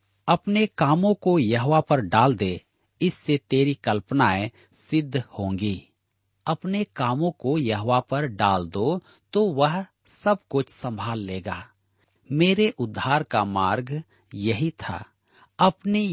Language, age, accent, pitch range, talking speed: Hindi, 40-59, native, 105-150 Hz, 120 wpm